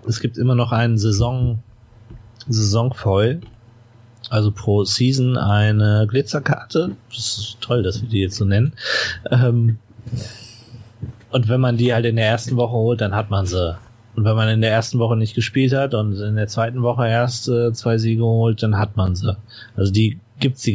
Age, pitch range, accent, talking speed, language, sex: 30-49, 105-125 Hz, German, 180 wpm, German, male